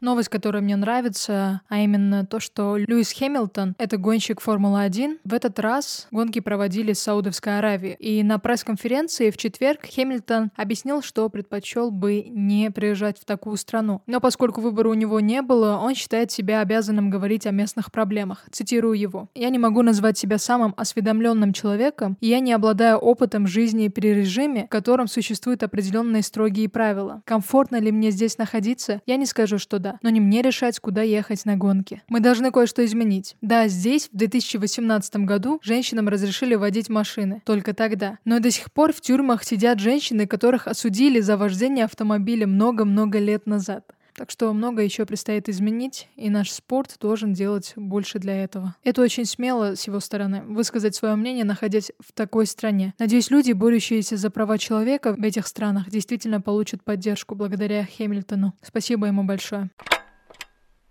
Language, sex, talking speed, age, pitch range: Russian, female, 165 wpm, 20-39, 205-235 Hz